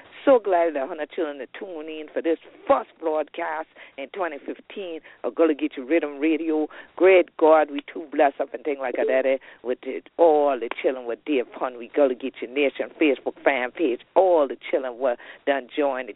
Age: 50-69